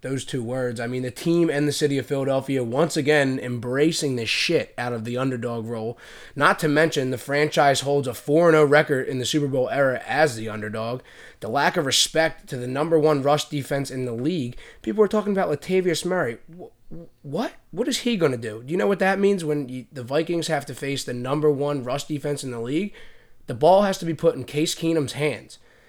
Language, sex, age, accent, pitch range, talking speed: English, male, 20-39, American, 135-165 Hz, 225 wpm